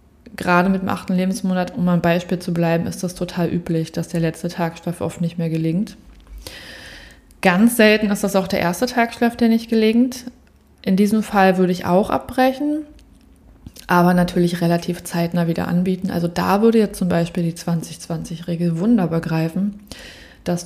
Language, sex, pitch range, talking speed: German, female, 165-195 Hz, 165 wpm